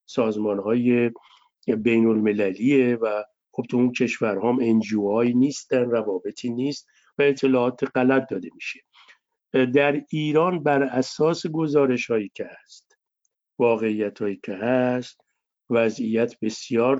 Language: Persian